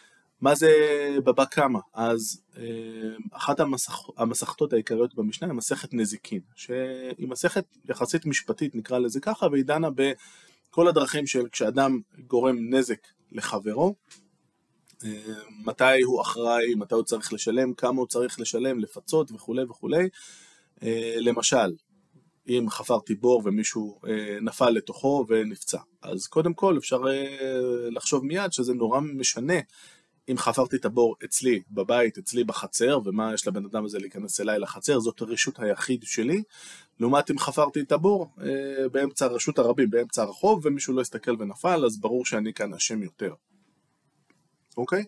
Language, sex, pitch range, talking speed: Hebrew, male, 115-155 Hz, 130 wpm